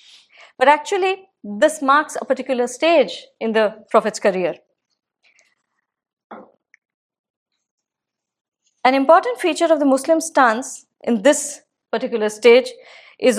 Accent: Indian